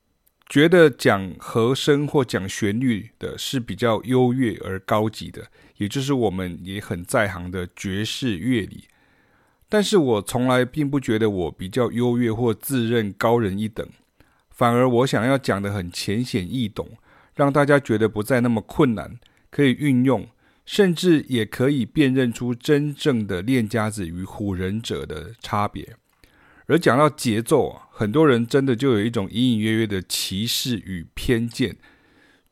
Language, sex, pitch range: Chinese, male, 105-135 Hz